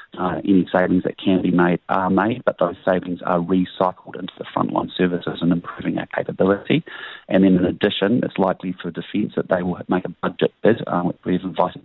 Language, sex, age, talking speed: English, male, 30-49, 205 wpm